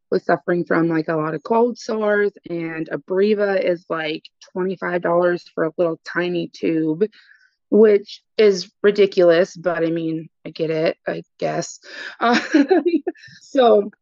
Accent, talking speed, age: American, 135 wpm, 20-39